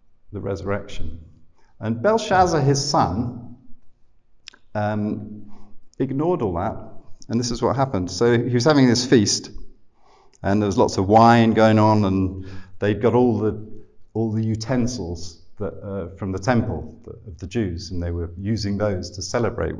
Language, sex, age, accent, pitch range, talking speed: English, male, 50-69, British, 95-120 Hz, 160 wpm